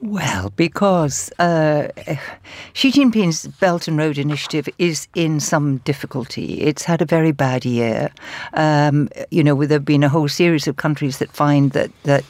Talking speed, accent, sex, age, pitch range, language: 165 wpm, British, female, 60-79, 140-175 Hz, English